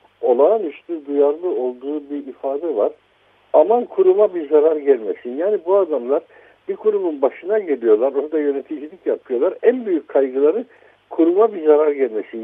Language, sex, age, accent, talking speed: Turkish, male, 60-79, native, 140 wpm